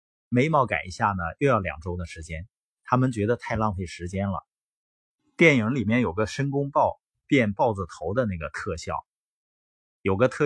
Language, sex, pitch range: Chinese, male, 95-135 Hz